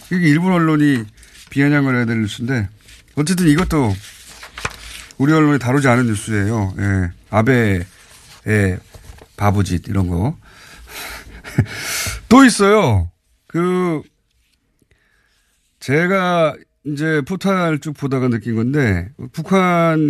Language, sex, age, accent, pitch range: Korean, male, 40-59, native, 105-155 Hz